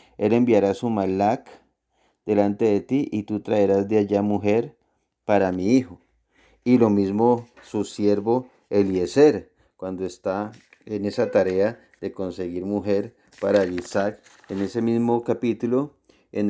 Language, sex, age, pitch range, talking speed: Spanish, male, 30-49, 100-115 Hz, 135 wpm